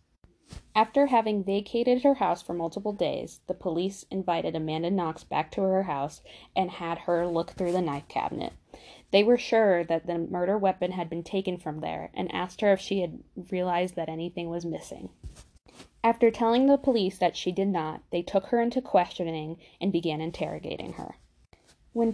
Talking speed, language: 180 wpm, English